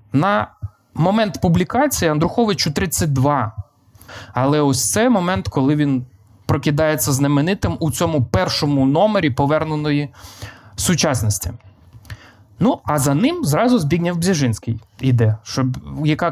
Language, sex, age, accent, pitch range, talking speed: Ukrainian, male, 20-39, native, 120-195 Hz, 105 wpm